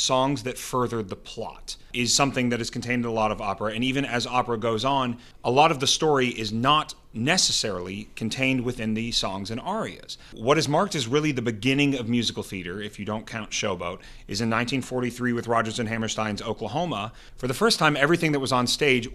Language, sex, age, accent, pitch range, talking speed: English, male, 30-49, American, 110-135 Hz, 210 wpm